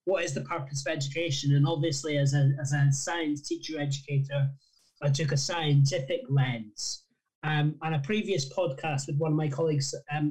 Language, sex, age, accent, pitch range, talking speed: English, male, 20-39, British, 140-160 Hz, 175 wpm